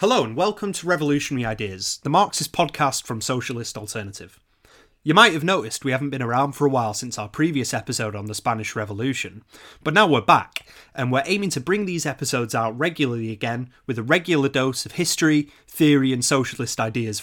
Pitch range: 115-160 Hz